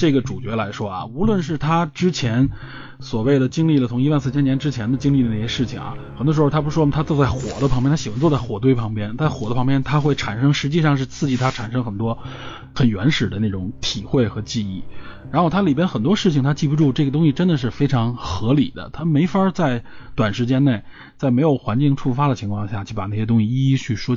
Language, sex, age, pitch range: Chinese, male, 20-39, 115-150 Hz